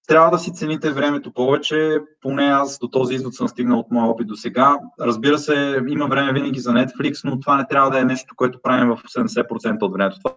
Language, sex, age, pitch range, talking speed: Bulgarian, male, 20-39, 125-150 Hz, 225 wpm